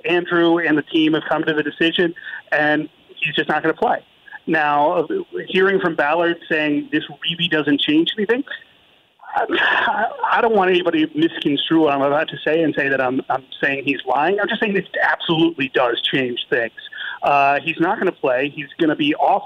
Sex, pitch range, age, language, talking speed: male, 150-205 Hz, 40-59, English, 195 wpm